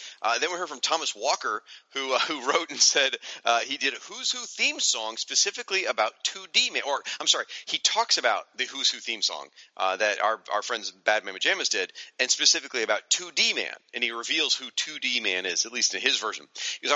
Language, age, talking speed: English, 40-59, 225 wpm